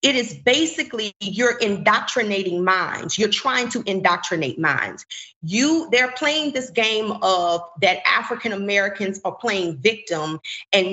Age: 30-49